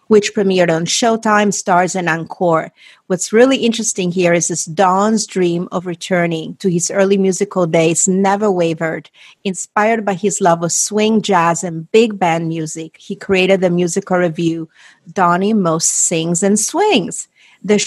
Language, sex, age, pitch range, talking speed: English, female, 40-59, 175-215 Hz, 155 wpm